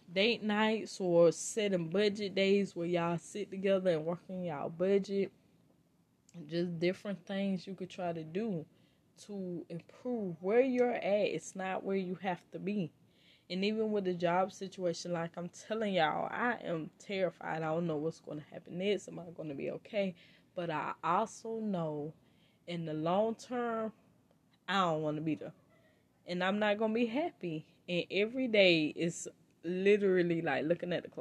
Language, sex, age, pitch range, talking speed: English, female, 10-29, 175-225 Hz, 170 wpm